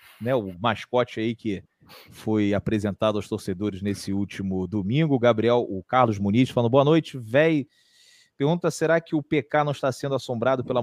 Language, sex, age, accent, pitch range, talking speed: Portuguese, male, 30-49, Brazilian, 115-155 Hz, 165 wpm